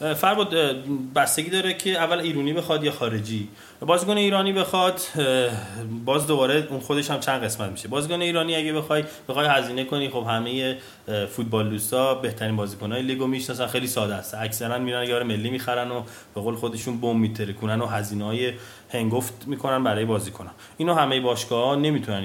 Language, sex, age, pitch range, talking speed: Persian, male, 30-49, 110-145 Hz, 165 wpm